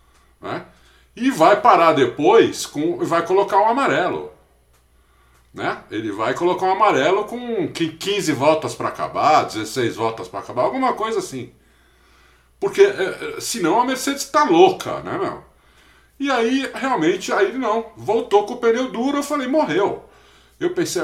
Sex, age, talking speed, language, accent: male, 50-69, 150 wpm, Portuguese, Brazilian